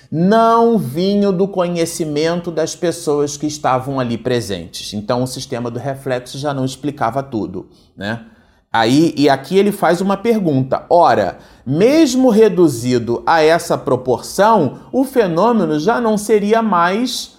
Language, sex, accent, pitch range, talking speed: Portuguese, male, Brazilian, 150-230 Hz, 130 wpm